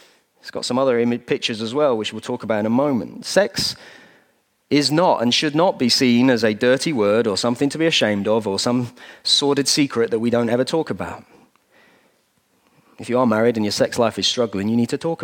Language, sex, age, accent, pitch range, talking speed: English, male, 30-49, British, 120-150 Hz, 220 wpm